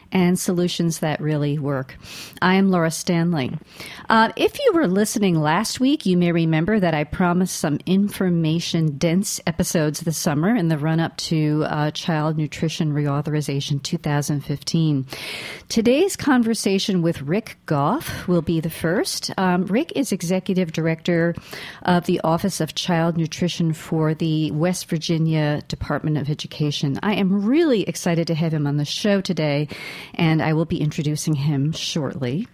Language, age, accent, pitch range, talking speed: English, 50-69, American, 150-190 Hz, 155 wpm